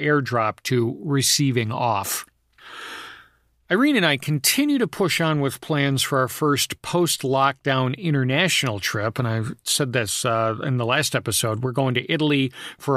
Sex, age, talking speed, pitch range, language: male, 40-59, 155 wpm, 125-160 Hz, English